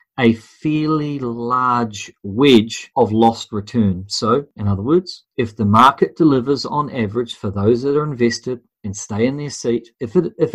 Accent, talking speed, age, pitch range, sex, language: Australian, 170 wpm, 40-59, 110-130 Hz, male, English